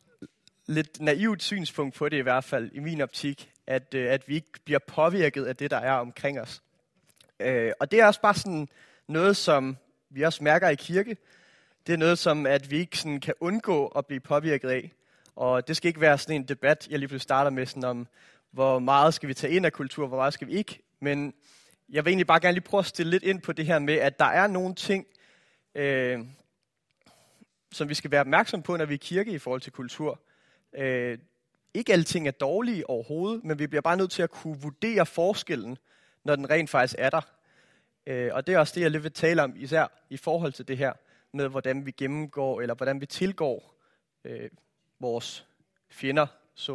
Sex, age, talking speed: male, 30-49, 215 wpm